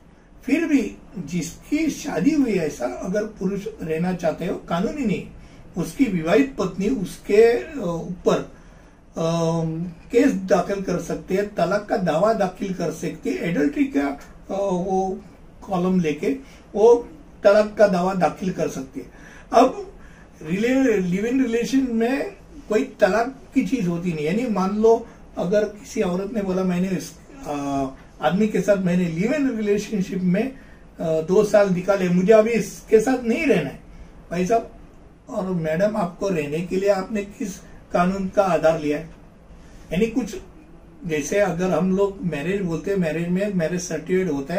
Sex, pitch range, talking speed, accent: male, 170-215 Hz, 110 wpm, native